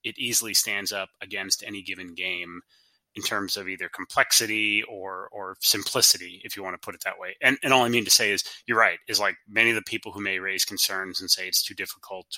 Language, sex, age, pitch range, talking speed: English, male, 30-49, 100-135 Hz, 240 wpm